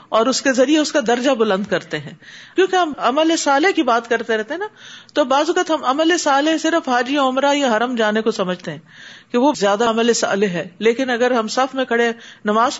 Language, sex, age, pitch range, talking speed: Urdu, female, 40-59, 195-275 Hz, 225 wpm